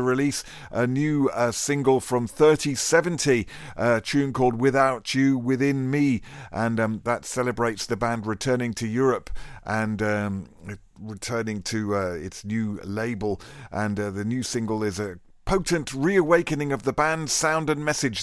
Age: 50-69